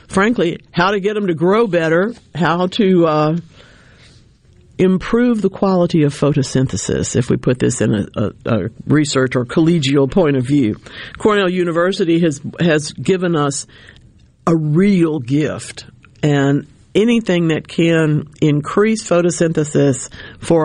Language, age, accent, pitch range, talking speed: English, 50-69, American, 140-175 Hz, 135 wpm